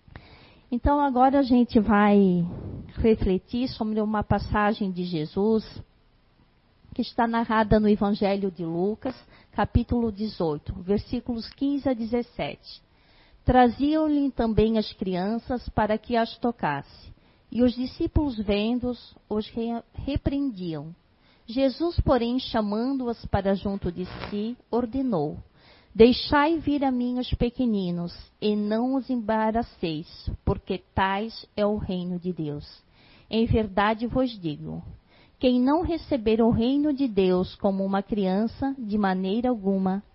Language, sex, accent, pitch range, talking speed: Portuguese, female, Brazilian, 195-250 Hz, 120 wpm